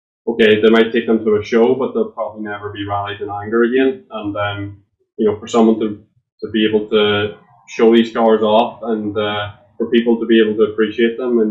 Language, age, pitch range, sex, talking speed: English, 20-39, 100-115 Hz, male, 225 wpm